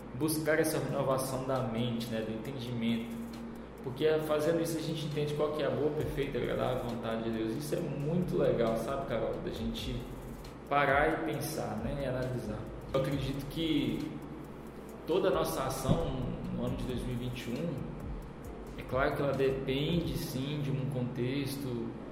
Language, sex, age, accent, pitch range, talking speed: Portuguese, male, 20-39, Brazilian, 115-150 Hz, 155 wpm